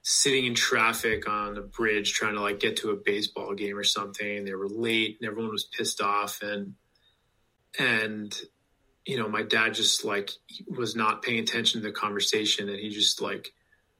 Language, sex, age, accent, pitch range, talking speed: English, male, 20-39, American, 105-130 Hz, 185 wpm